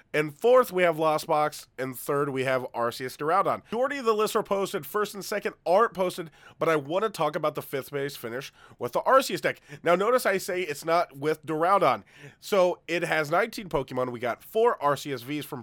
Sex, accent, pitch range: male, American, 125-180 Hz